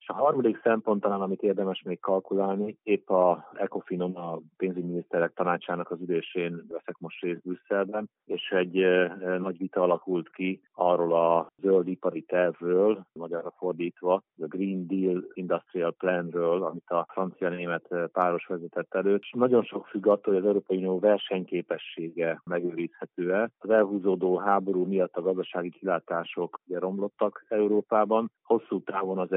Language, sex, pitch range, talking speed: Hungarian, male, 85-95 Hz, 140 wpm